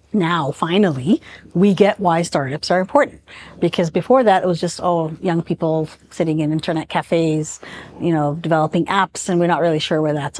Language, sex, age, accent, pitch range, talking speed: English, female, 50-69, American, 165-200 Hz, 190 wpm